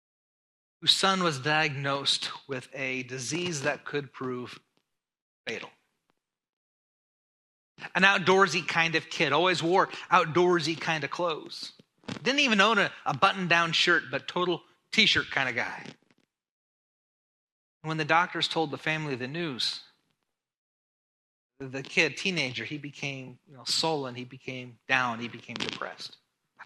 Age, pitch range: 30-49, 140-175 Hz